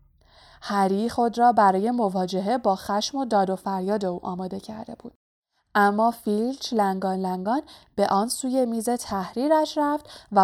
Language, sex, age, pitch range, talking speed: Persian, female, 20-39, 190-255 Hz, 150 wpm